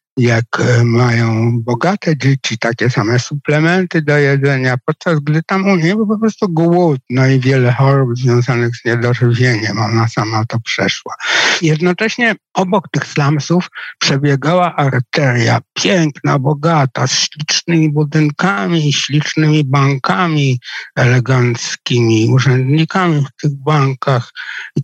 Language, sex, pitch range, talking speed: Polish, male, 125-170 Hz, 115 wpm